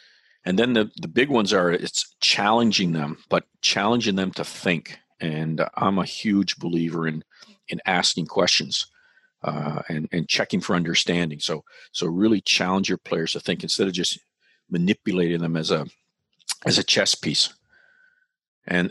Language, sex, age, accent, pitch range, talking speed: English, male, 50-69, American, 85-100 Hz, 160 wpm